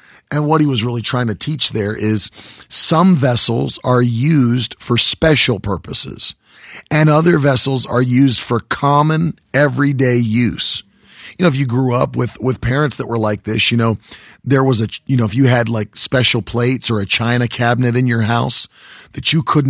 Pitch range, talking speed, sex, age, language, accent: 115-140 Hz, 190 wpm, male, 40-59, English, American